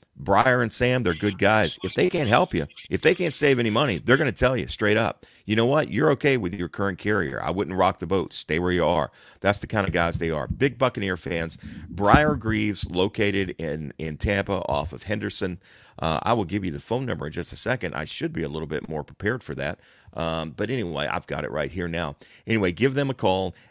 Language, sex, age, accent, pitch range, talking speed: English, male, 40-59, American, 85-110 Hz, 245 wpm